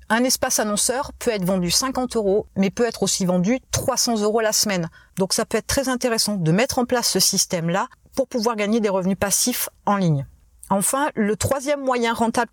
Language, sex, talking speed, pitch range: French, female, 200 wpm, 195-255 Hz